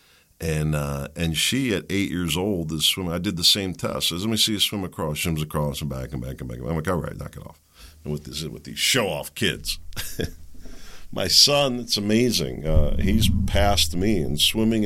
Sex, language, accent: male, English, American